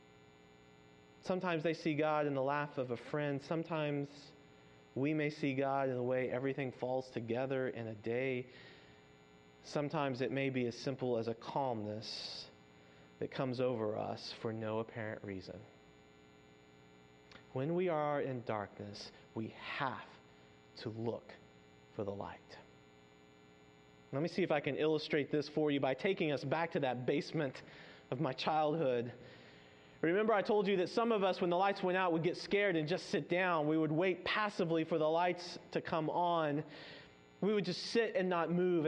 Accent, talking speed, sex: American, 170 wpm, male